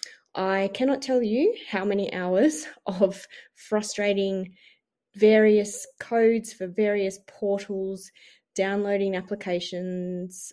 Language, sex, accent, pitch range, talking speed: English, female, Australian, 185-230 Hz, 90 wpm